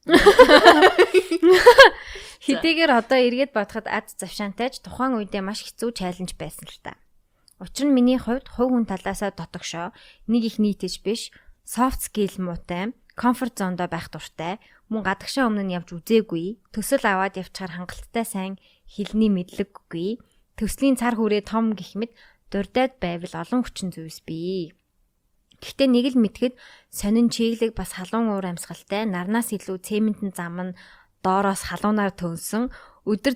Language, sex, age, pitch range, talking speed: English, female, 20-39, 185-235 Hz, 80 wpm